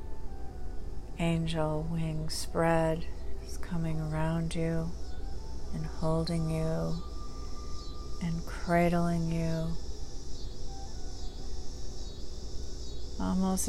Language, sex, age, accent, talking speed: English, female, 50-69, American, 60 wpm